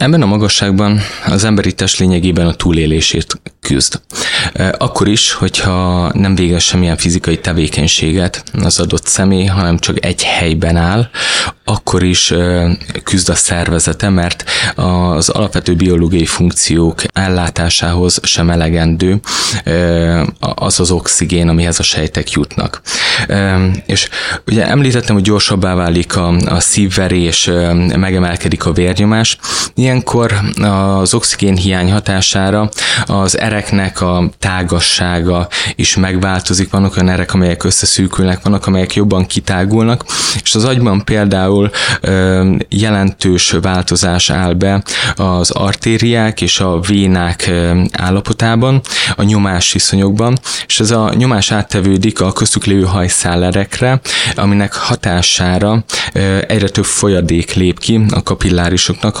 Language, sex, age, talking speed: Hungarian, male, 20-39, 120 wpm